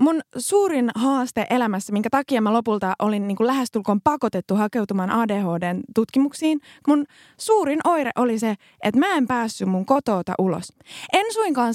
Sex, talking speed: female, 145 wpm